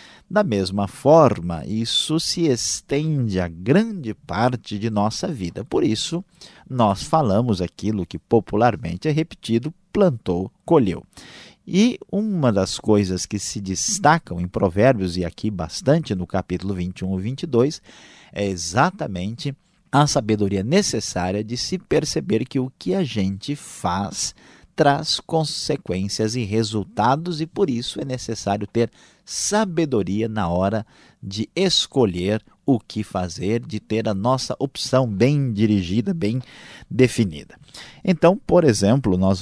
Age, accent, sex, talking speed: 50-69, Brazilian, male, 130 wpm